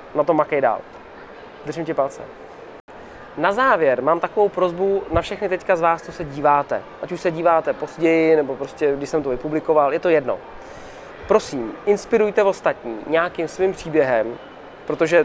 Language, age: Czech, 20-39